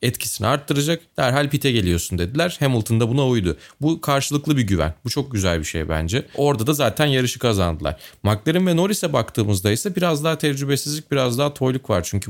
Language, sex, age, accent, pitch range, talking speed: Turkish, male, 30-49, native, 105-140 Hz, 185 wpm